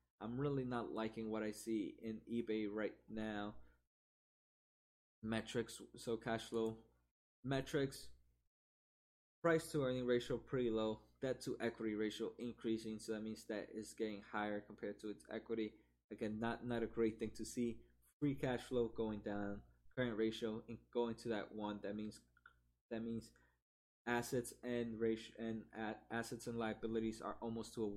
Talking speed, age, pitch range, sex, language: 160 wpm, 20-39, 105-120 Hz, male, English